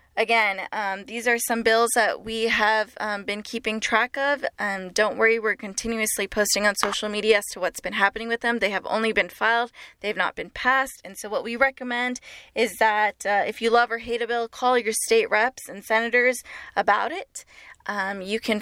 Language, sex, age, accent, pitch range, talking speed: English, female, 10-29, American, 205-245 Hz, 210 wpm